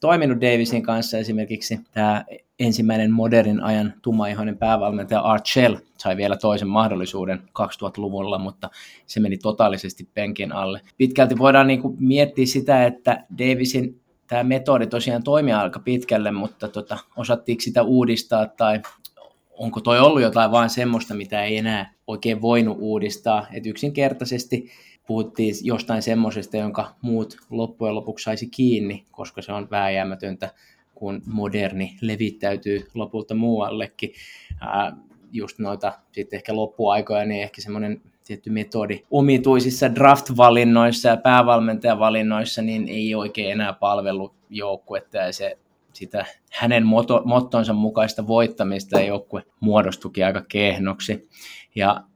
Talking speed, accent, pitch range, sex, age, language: 125 wpm, native, 105-120 Hz, male, 20-39, Finnish